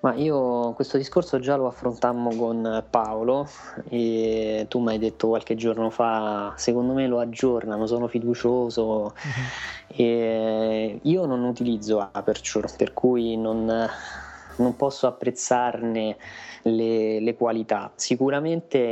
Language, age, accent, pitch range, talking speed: Italian, 20-39, native, 110-125 Hz, 120 wpm